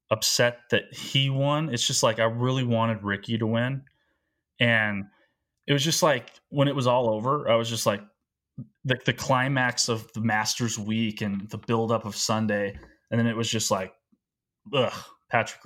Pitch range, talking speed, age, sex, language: 100-120 Hz, 180 wpm, 20-39, male, English